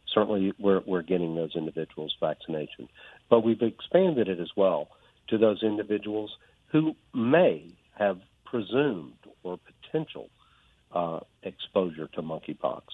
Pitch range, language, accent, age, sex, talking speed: 90-110 Hz, English, American, 60-79, male, 120 wpm